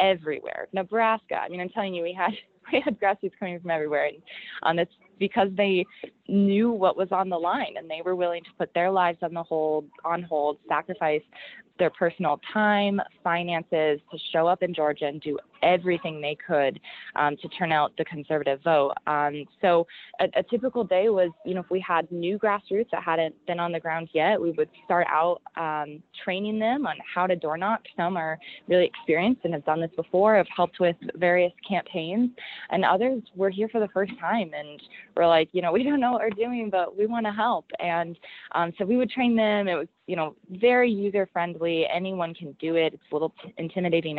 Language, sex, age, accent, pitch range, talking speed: English, female, 20-39, American, 160-200 Hz, 210 wpm